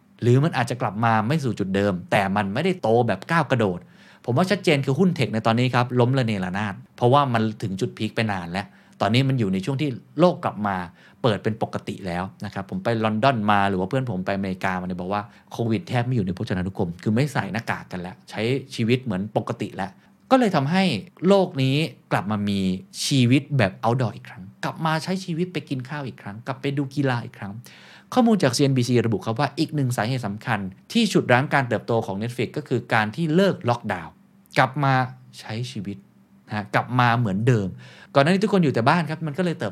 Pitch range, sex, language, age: 105-145 Hz, male, Thai, 20-39